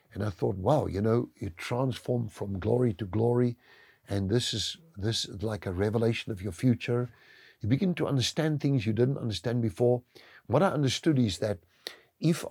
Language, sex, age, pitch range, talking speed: English, male, 60-79, 100-135 Hz, 180 wpm